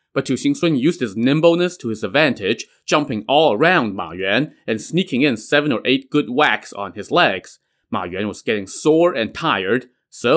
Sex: male